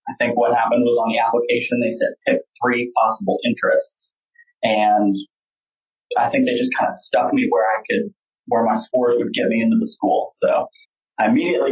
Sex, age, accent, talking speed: male, 20-39, American, 195 wpm